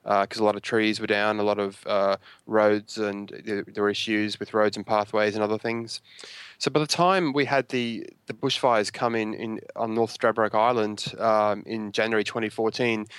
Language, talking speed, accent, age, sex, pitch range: English, 205 wpm, Australian, 20-39, male, 105-115 Hz